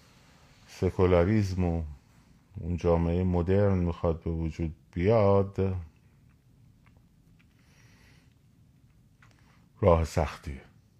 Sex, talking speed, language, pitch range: male, 60 wpm, Persian, 75-110 Hz